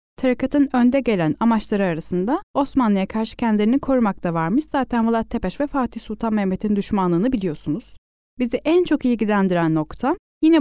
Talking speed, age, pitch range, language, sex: 145 wpm, 10-29, 185-260 Hz, Turkish, female